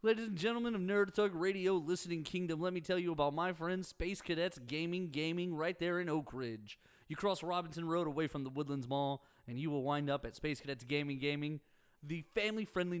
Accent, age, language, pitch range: American, 30-49, English, 140-180 Hz